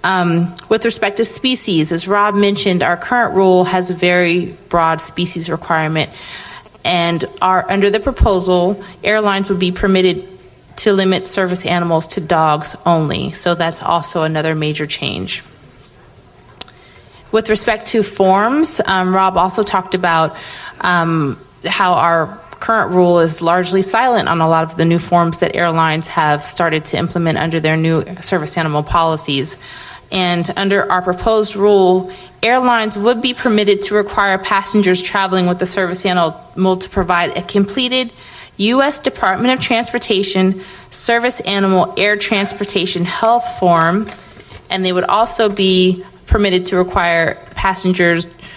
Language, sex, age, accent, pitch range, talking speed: English, female, 30-49, American, 170-200 Hz, 140 wpm